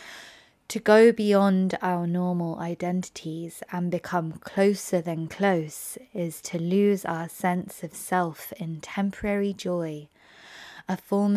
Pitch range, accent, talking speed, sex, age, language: 165-190 Hz, British, 120 wpm, female, 20-39, English